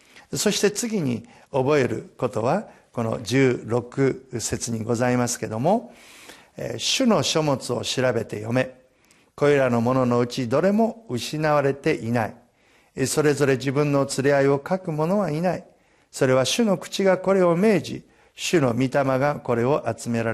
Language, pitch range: Japanese, 120-150 Hz